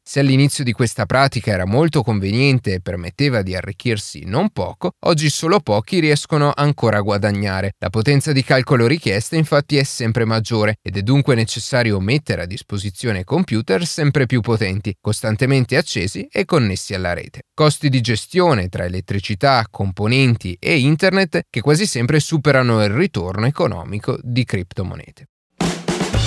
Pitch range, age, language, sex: 105-145 Hz, 30-49, Italian, male